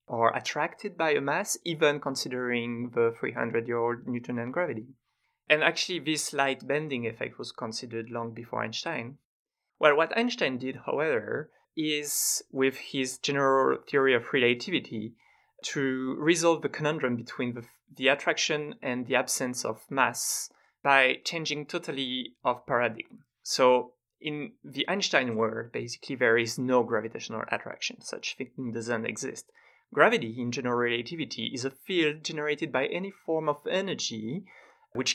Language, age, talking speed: English, 30-49, 140 wpm